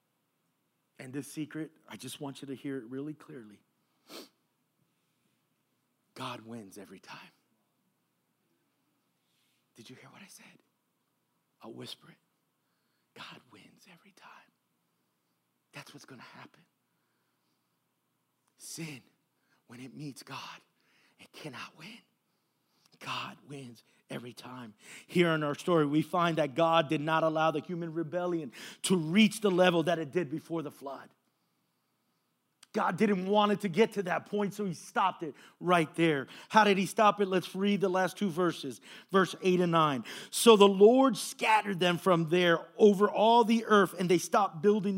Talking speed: 155 wpm